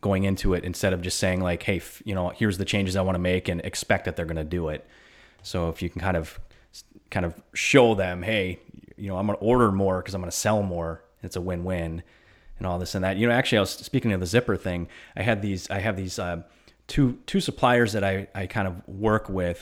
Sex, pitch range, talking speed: male, 90-115 Hz, 270 wpm